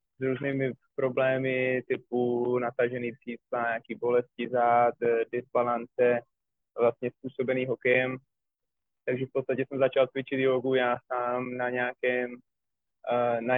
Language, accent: Czech, native